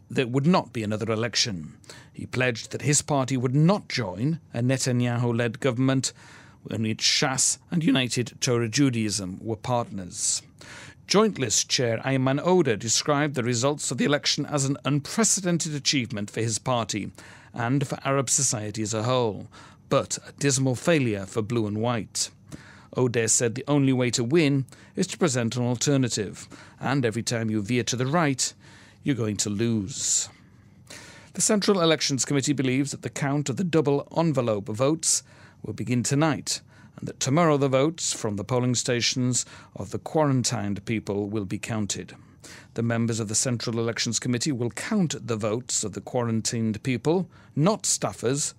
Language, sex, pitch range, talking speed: English, male, 110-140 Hz, 160 wpm